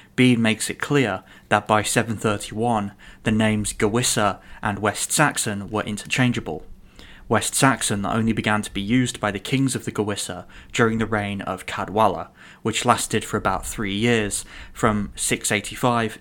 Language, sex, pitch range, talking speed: English, male, 100-120 Hz, 150 wpm